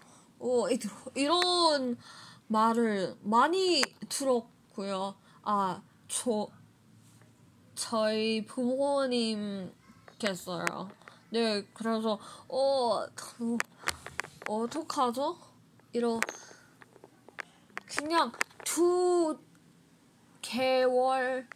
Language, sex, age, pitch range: Korean, female, 20-39, 215-280 Hz